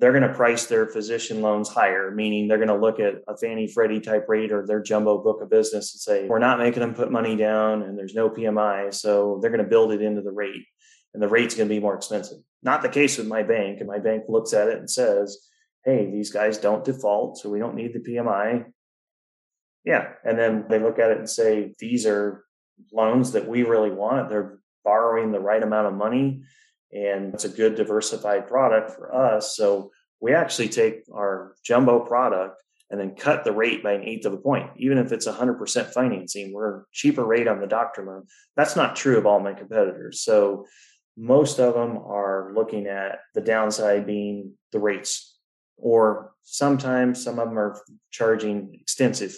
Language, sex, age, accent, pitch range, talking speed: English, male, 20-39, American, 105-125 Hz, 205 wpm